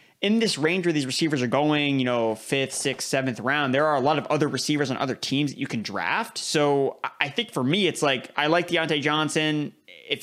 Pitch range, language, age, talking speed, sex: 130-155 Hz, English, 20-39, 235 wpm, male